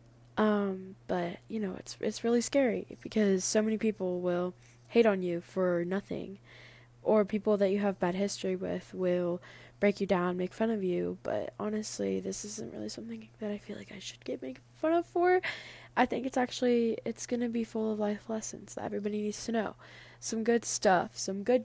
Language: English